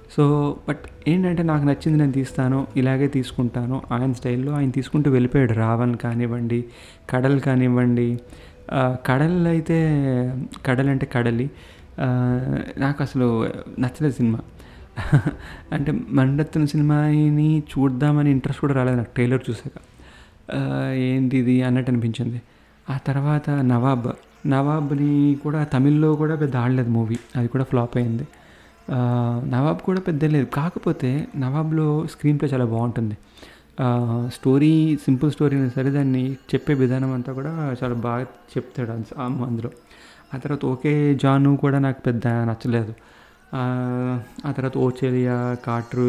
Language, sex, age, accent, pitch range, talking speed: Telugu, male, 30-49, native, 125-150 Hz, 120 wpm